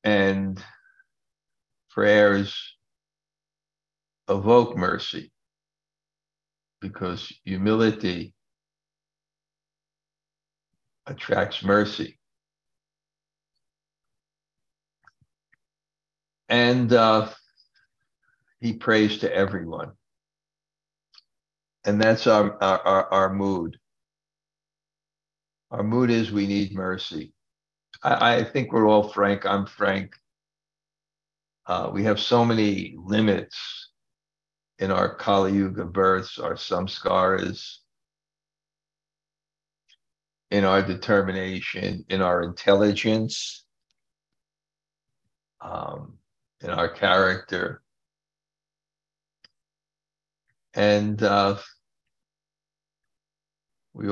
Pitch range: 100-155 Hz